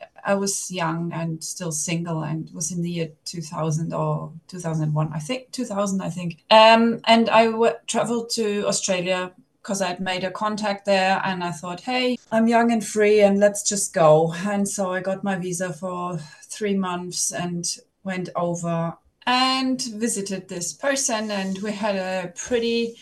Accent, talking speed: German, 165 wpm